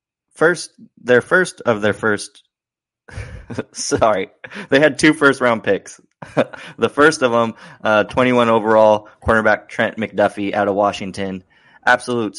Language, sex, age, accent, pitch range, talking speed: English, male, 20-39, American, 100-115 Hz, 130 wpm